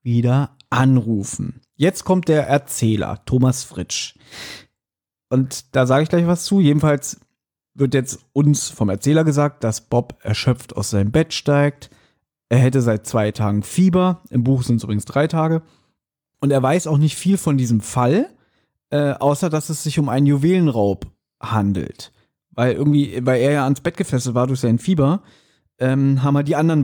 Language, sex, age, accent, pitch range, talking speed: German, male, 40-59, German, 125-150 Hz, 170 wpm